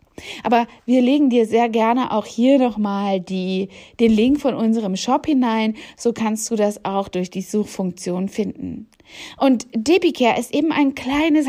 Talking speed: 155 wpm